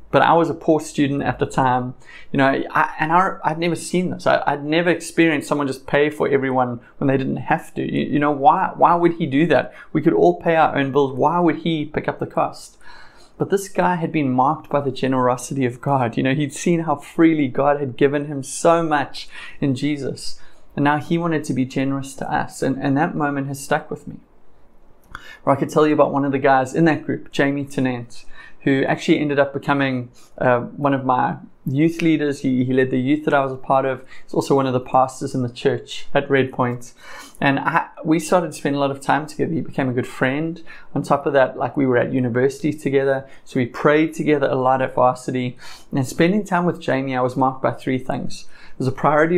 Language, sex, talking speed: English, male, 230 wpm